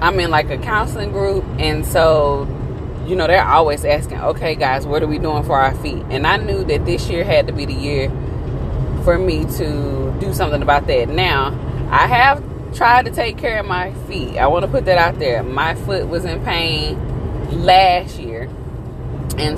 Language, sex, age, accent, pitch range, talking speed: English, female, 20-39, American, 125-160 Hz, 200 wpm